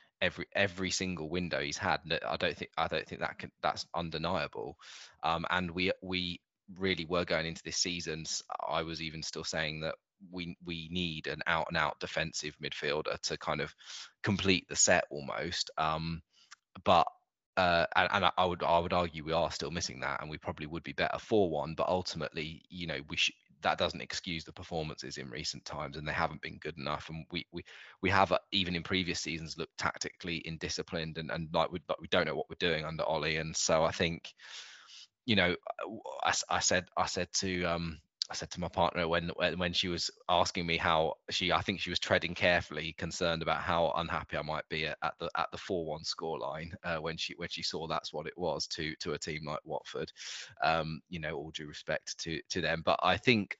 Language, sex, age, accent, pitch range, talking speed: English, male, 20-39, British, 80-90 Hz, 215 wpm